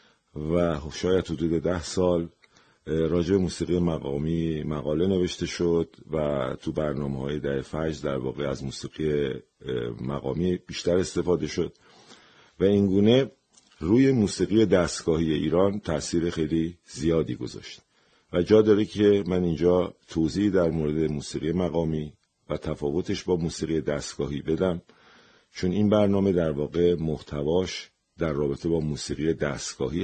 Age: 50-69